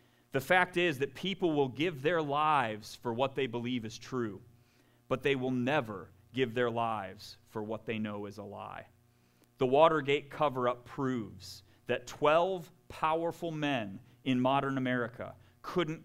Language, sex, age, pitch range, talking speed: English, male, 30-49, 115-150 Hz, 155 wpm